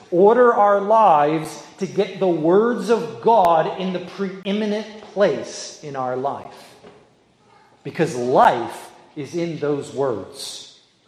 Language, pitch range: English, 140-195 Hz